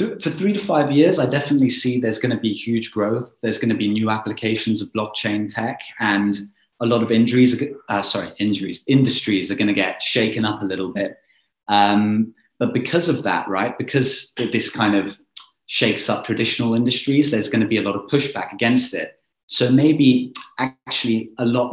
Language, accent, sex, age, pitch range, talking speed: English, British, male, 30-49, 100-125 Hz, 195 wpm